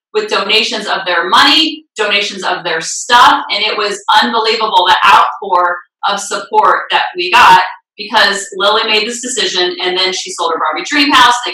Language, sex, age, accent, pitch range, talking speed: English, female, 30-49, American, 195-245 Hz, 175 wpm